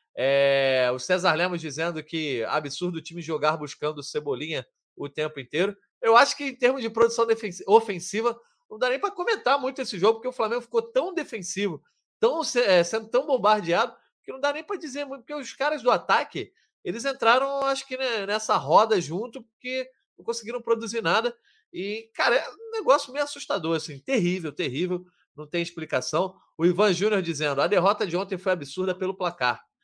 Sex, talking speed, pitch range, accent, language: male, 185 wpm, 170-235 Hz, Brazilian, Portuguese